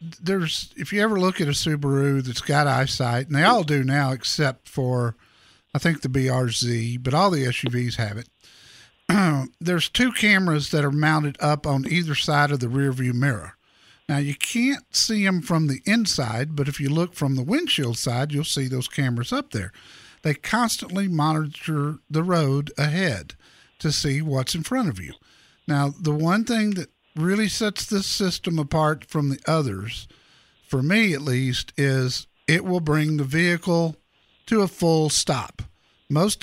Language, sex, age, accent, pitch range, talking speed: English, male, 50-69, American, 135-170 Hz, 175 wpm